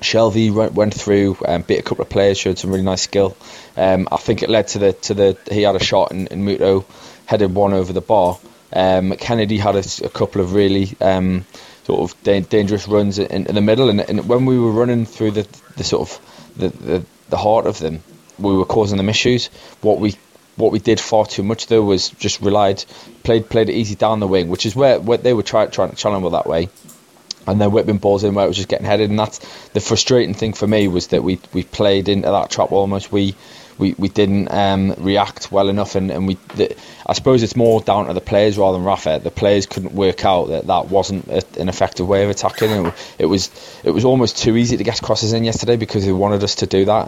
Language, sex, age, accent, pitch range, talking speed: English, male, 20-39, British, 95-110 Hz, 240 wpm